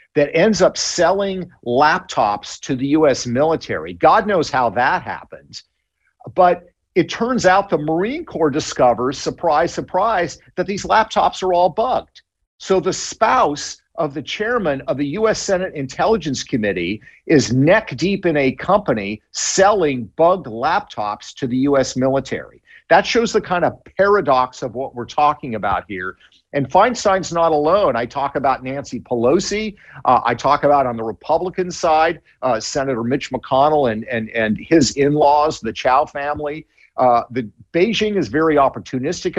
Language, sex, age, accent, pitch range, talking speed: English, male, 50-69, American, 135-185 Hz, 155 wpm